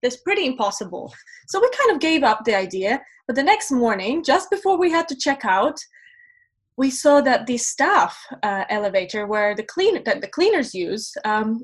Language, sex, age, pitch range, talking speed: English, female, 20-39, 230-310 Hz, 190 wpm